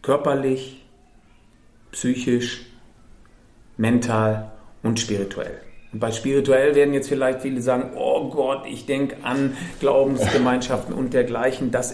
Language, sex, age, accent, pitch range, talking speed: German, male, 40-59, German, 115-135 Hz, 110 wpm